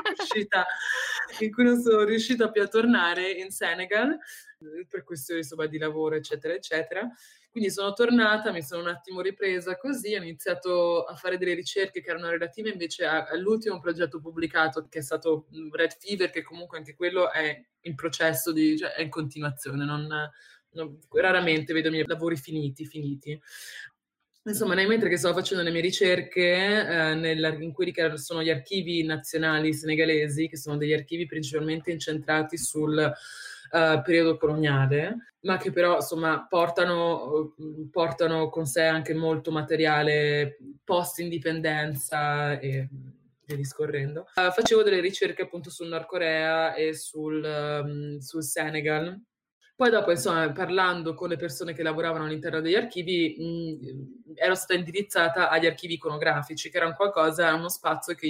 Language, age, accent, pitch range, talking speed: Italian, 20-39, native, 155-180 Hz, 145 wpm